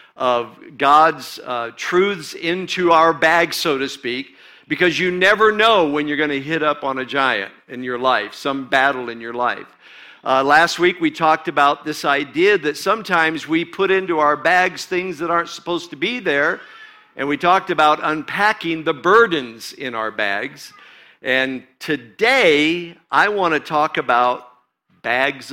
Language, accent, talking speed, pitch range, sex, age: English, American, 165 wpm, 125-165 Hz, male, 50-69